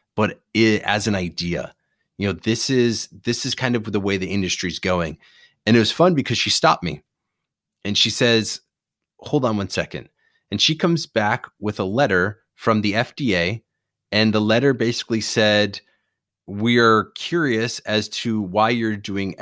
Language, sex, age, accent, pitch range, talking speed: English, male, 30-49, American, 100-125 Hz, 175 wpm